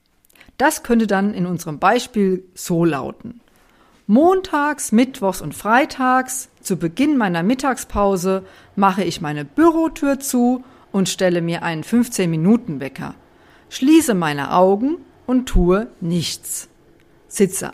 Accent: German